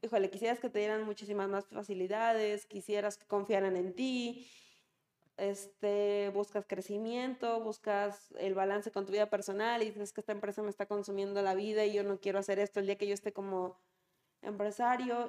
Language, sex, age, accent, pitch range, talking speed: Spanish, female, 20-39, Mexican, 195-235 Hz, 180 wpm